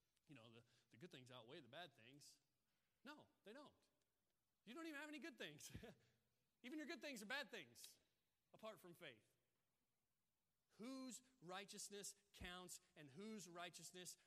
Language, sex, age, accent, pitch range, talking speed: English, male, 30-49, American, 145-205 Hz, 150 wpm